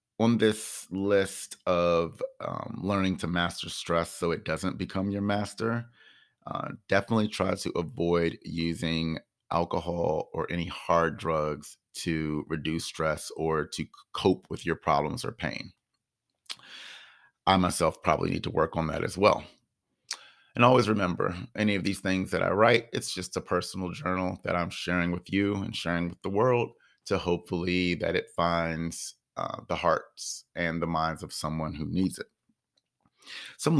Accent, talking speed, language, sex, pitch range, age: American, 160 wpm, English, male, 85-100 Hz, 30-49